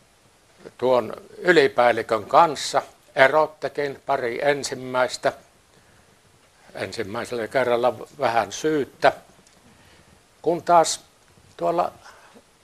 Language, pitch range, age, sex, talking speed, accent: Finnish, 125-150 Hz, 60-79, male, 60 wpm, native